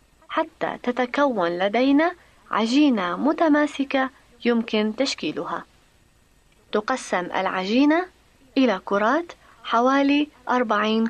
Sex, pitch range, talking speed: female, 225-305 Hz, 70 wpm